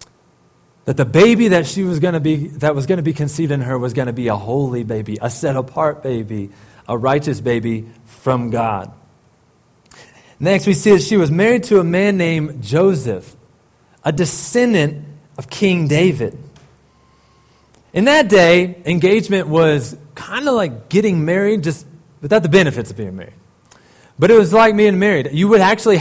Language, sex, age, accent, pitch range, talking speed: English, male, 30-49, American, 130-180 Hz, 175 wpm